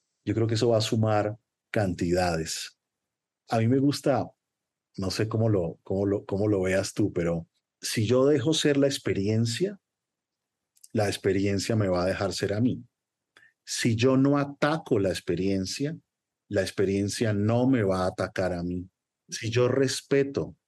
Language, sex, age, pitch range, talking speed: Spanish, male, 40-59, 100-120 Hz, 165 wpm